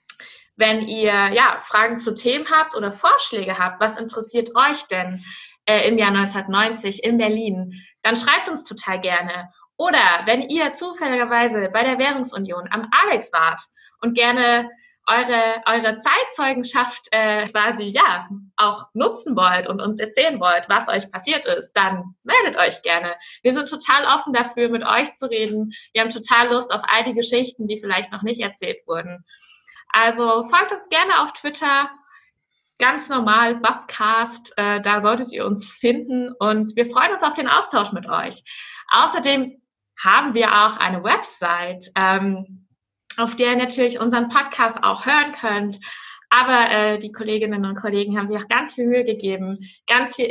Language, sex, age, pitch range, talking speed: German, female, 20-39, 200-250 Hz, 160 wpm